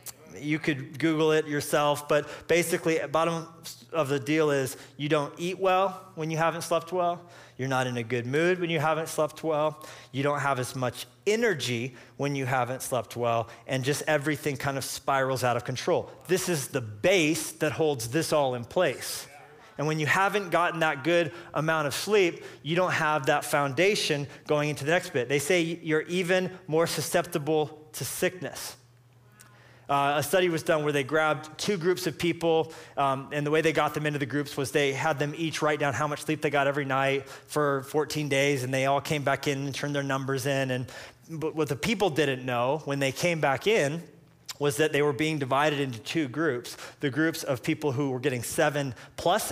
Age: 20-39